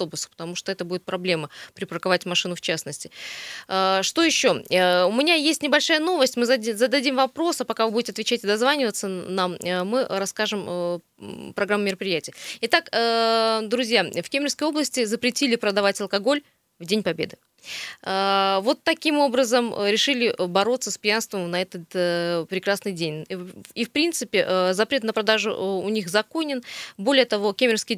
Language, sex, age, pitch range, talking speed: Russian, female, 20-39, 190-255 Hz, 140 wpm